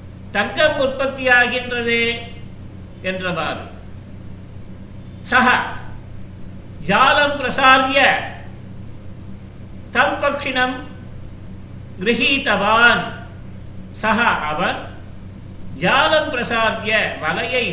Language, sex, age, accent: Tamil, male, 50-69, native